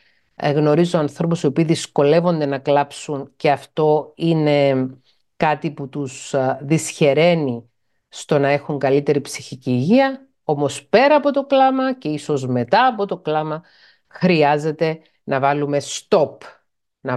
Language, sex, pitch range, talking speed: Greek, female, 145-215 Hz, 125 wpm